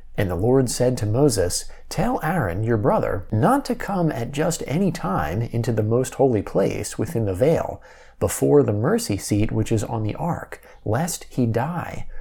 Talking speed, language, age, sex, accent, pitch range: 180 wpm, English, 30-49, male, American, 105-145 Hz